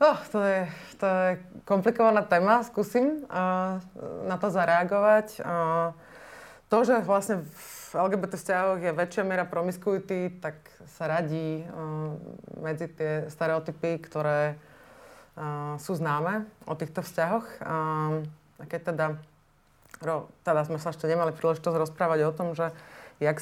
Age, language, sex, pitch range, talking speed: 20-39, Slovak, female, 160-190 Hz, 130 wpm